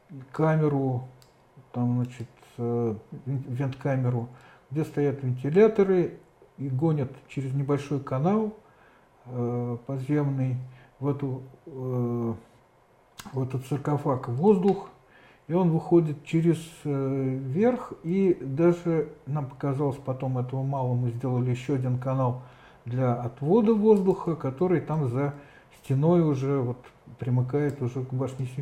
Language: Russian